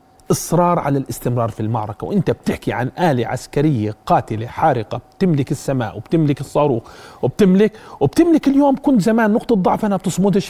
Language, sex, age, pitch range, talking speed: Arabic, male, 40-59, 125-170 Hz, 145 wpm